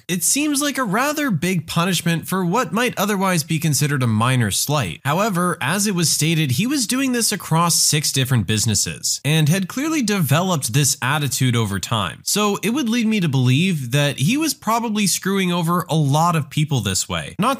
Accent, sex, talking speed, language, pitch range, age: American, male, 195 wpm, English, 130-195 Hz, 20-39